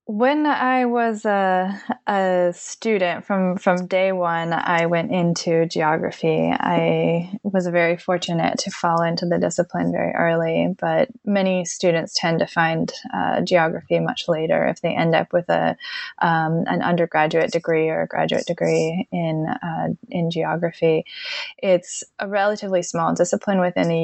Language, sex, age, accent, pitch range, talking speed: English, female, 20-39, American, 165-200 Hz, 150 wpm